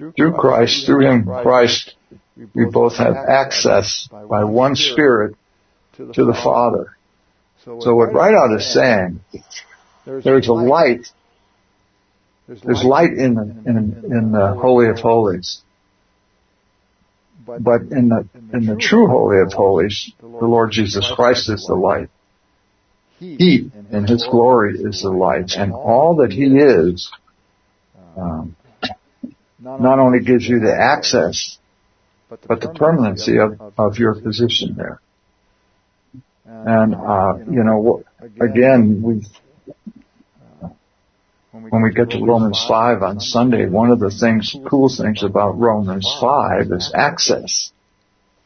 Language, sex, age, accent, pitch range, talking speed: English, male, 60-79, American, 100-120 Hz, 130 wpm